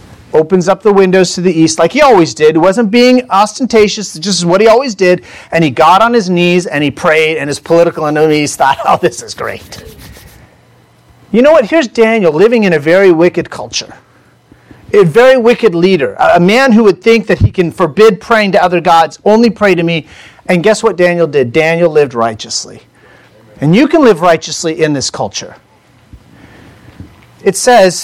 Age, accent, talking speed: 40-59, American, 190 wpm